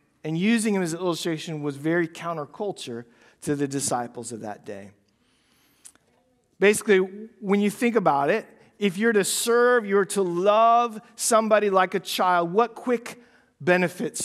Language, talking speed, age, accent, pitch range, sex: English, 145 wpm, 50-69, American, 145-205 Hz, male